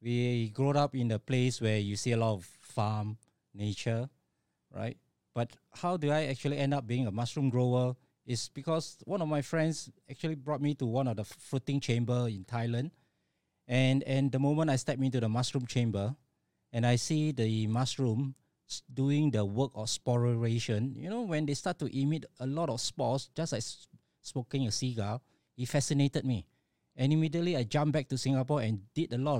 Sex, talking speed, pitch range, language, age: male, 190 wpm, 120-150 Hz, English, 20-39